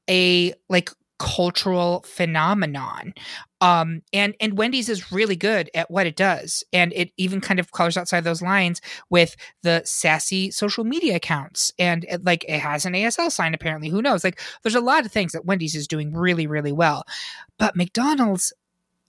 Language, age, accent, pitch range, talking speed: English, 20-39, American, 180-245 Hz, 175 wpm